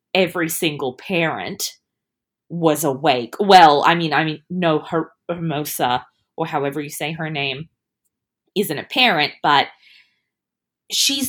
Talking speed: 120 wpm